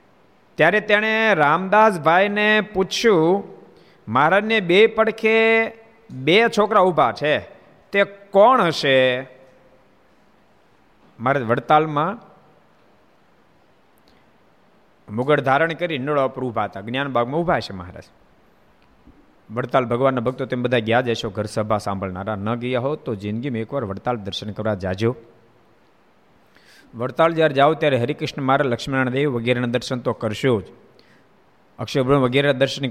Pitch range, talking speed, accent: 120-150 Hz, 115 wpm, native